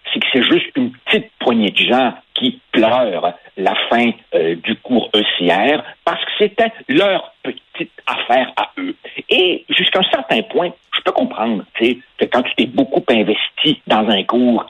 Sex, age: male, 60-79